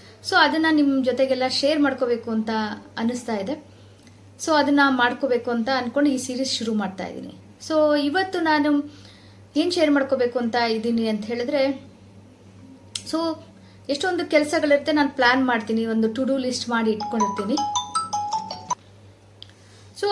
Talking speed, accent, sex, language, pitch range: 110 wpm, native, female, Kannada, 225-300 Hz